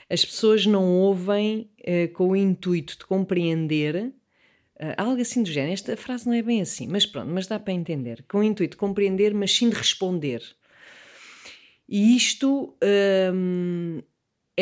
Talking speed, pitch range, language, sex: 160 wpm, 180-240 Hz, English, female